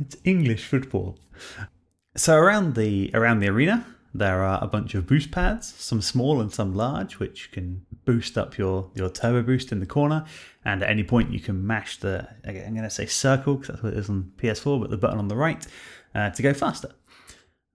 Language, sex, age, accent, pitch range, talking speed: English, male, 30-49, British, 95-125 Hz, 215 wpm